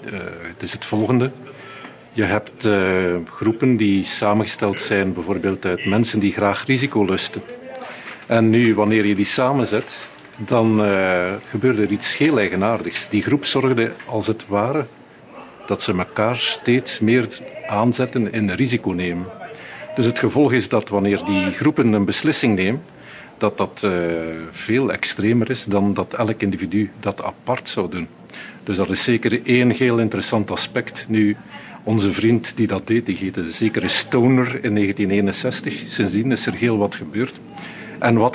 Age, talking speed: 50-69, 160 wpm